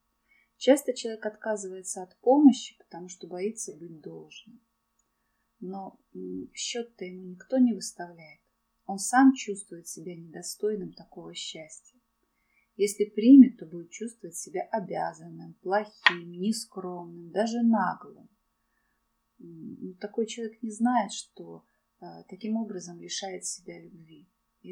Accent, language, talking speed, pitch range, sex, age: native, Russian, 110 wpm, 185-225 Hz, female, 30-49